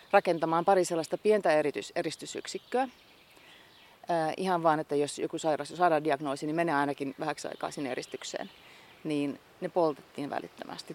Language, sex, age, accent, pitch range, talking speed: Finnish, female, 30-49, native, 150-175 Hz, 145 wpm